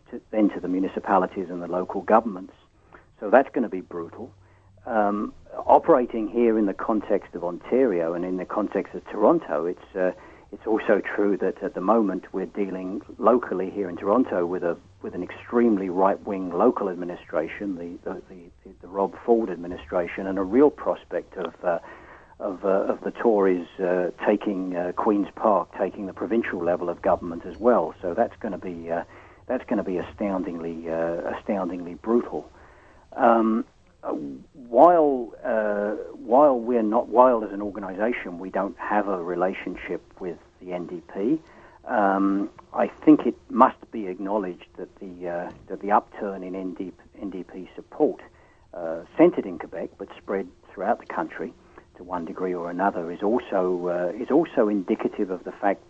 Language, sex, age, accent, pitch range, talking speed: English, male, 50-69, British, 90-105 Hz, 165 wpm